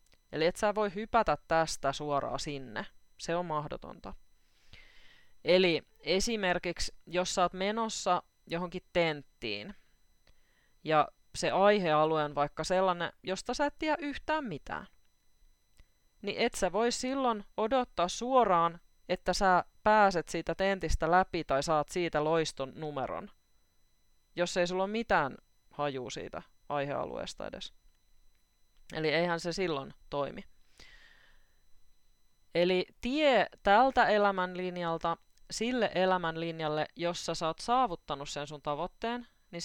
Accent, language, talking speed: native, Finnish, 115 wpm